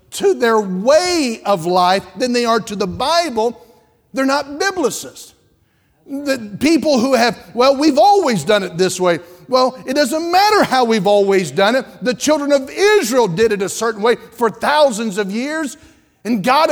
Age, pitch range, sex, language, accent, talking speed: 50-69, 225-310 Hz, male, English, American, 175 wpm